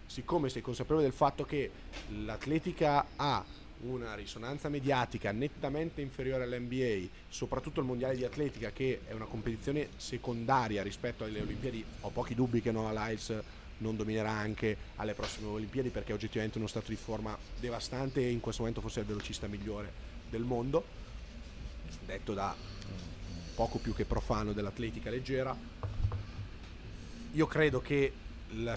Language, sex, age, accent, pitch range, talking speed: Italian, male, 30-49, native, 105-130 Hz, 145 wpm